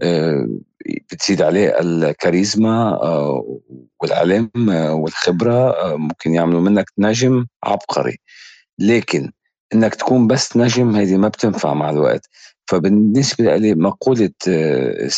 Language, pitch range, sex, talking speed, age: Arabic, 90-115 Hz, male, 95 wpm, 50-69